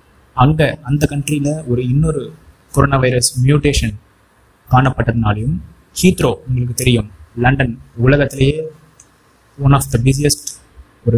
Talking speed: 100 wpm